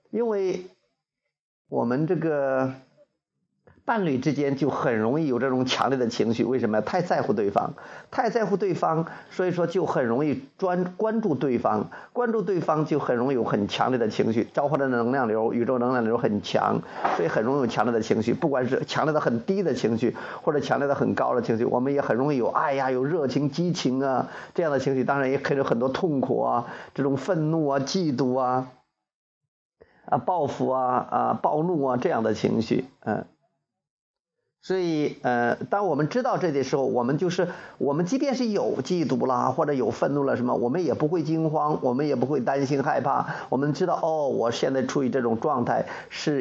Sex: male